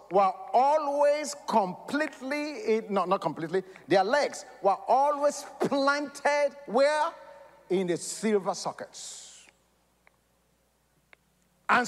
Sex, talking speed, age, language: male, 90 wpm, 50-69, English